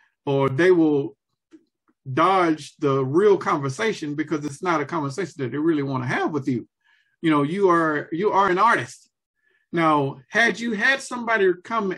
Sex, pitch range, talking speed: male, 145-210 Hz, 170 wpm